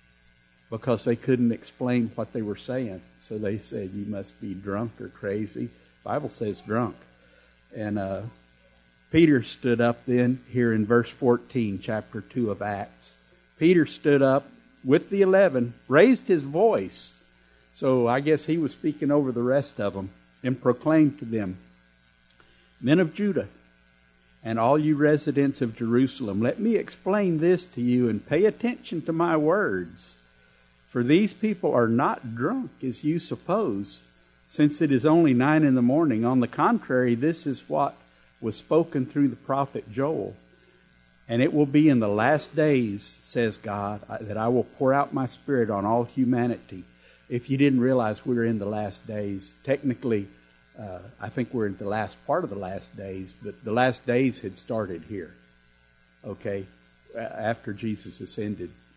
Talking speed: 165 wpm